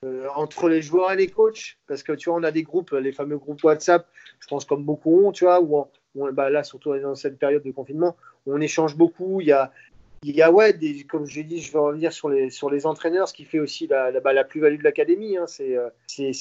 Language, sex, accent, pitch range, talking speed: French, male, French, 140-170 Hz, 265 wpm